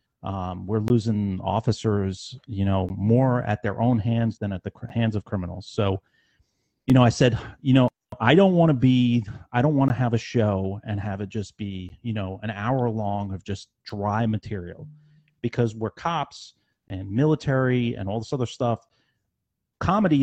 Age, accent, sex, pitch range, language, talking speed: 40-59, American, male, 100-120 Hz, English, 180 wpm